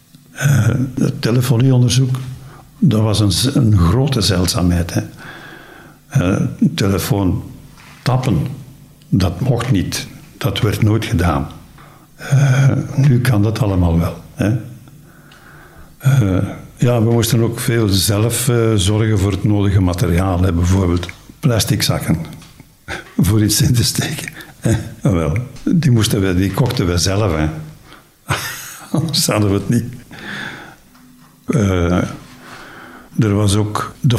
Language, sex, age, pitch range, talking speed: Dutch, male, 60-79, 95-130 Hz, 120 wpm